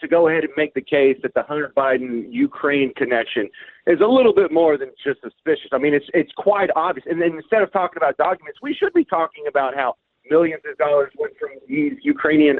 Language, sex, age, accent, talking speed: English, male, 30-49, American, 220 wpm